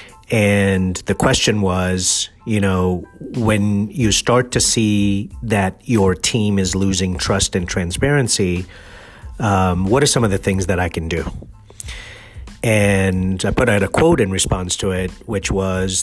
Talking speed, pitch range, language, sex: 155 wpm, 95-110 Hz, English, male